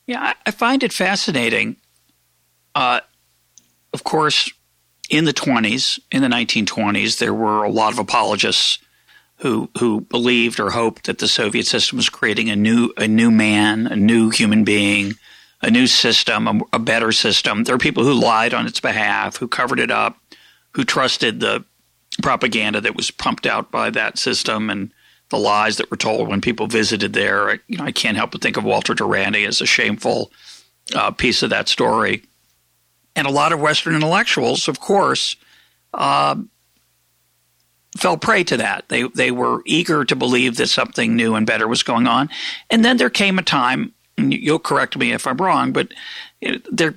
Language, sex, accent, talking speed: English, male, American, 180 wpm